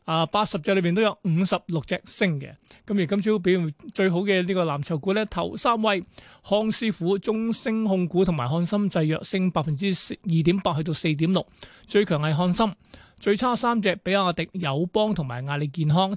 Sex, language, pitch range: male, Chinese, 165-205 Hz